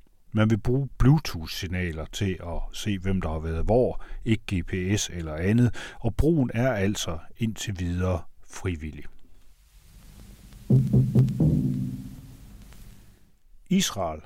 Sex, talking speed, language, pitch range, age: male, 100 wpm, Danish, 85-115 Hz, 60-79